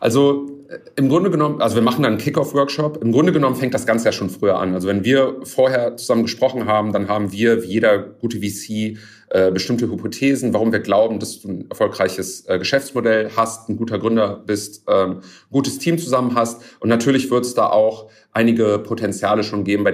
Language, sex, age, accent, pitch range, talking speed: German, male, 40-59, German, 105-125 Hz, 210 wpm